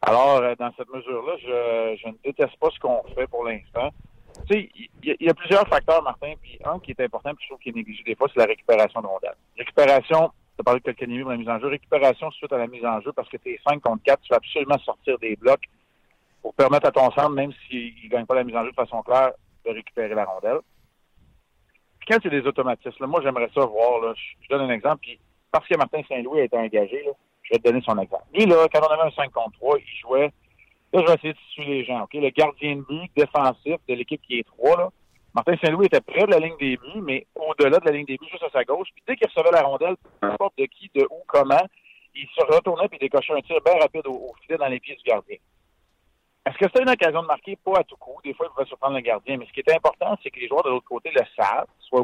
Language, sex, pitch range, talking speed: French, male, 125-205 Hz, 270 wpm